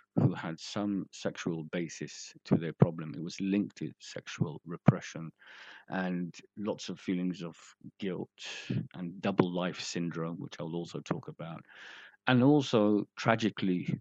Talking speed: 135 wpm